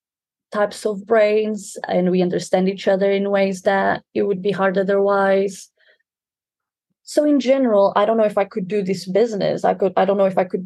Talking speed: 205 wpm